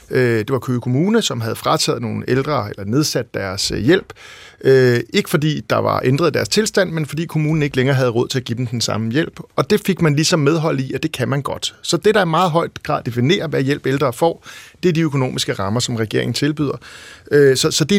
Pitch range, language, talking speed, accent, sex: 125-165 Hz, Danish, 225 wpm, native, male